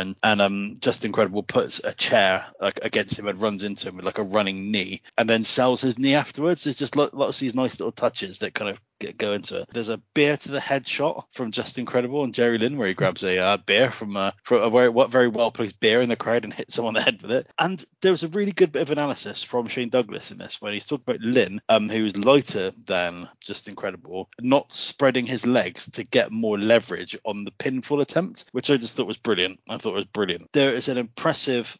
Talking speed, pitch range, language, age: 240 wpm, 110-145 Hz, English, 20-39